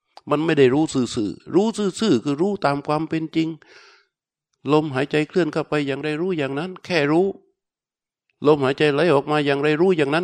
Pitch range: 140-175 Hz